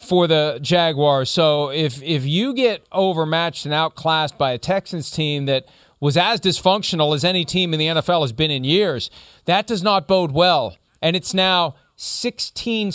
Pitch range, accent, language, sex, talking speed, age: 135-170 Hz, American, English, male, 180 wpm, 40-59